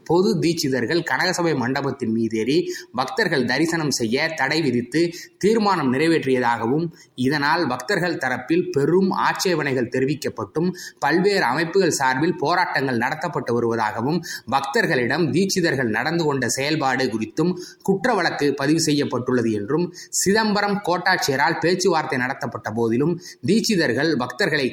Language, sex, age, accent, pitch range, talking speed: Tamil, male, 20-39, native, 125-175 Hz, 100 wpm